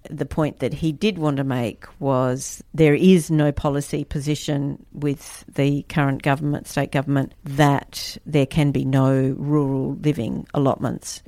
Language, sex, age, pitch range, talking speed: English, female, 50-69, 135-155 Hz, 150 wpm